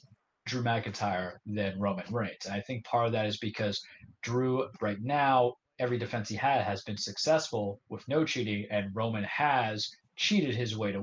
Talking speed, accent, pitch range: 180 wpm, American, 105-140 Hz